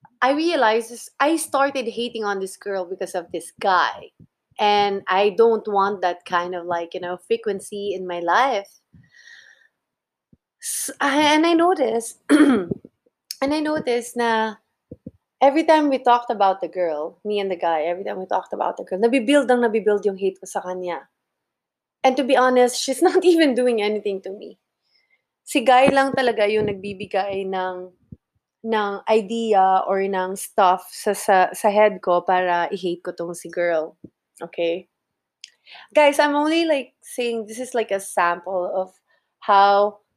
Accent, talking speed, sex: Filipino, 160 wpm, female